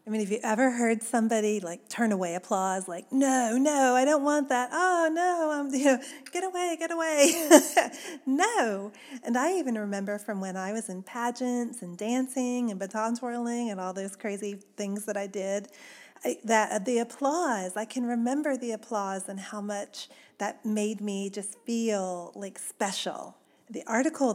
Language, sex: English, female